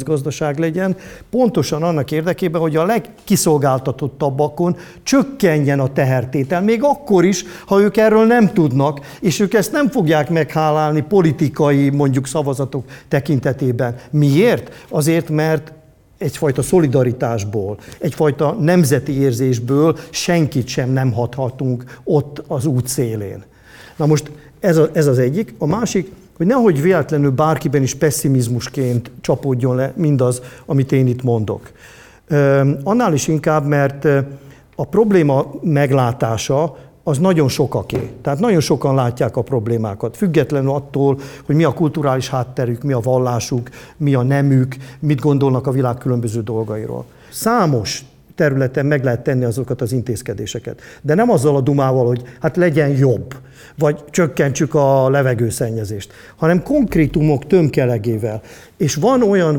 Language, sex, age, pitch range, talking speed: Hungarian, male, 50-69, 130-160 Hz, 130 wpm